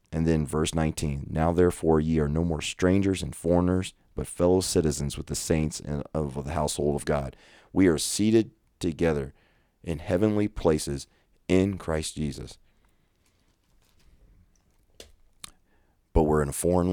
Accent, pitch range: American, 75-90 Hz